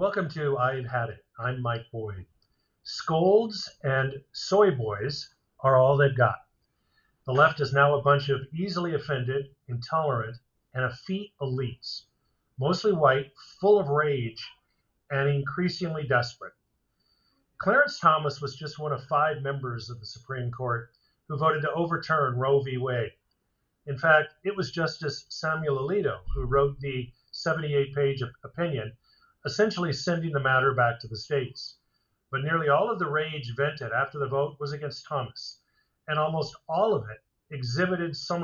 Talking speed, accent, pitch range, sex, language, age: 150 wpm, American, 130-160 Hz, male, English, 50-69